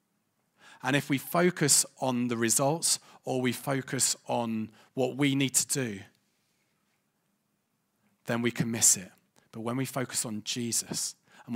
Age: 30-49